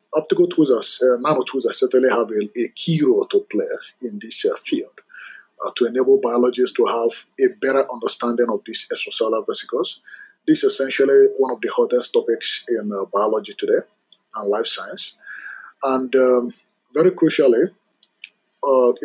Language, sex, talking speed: English, male, 160 wpm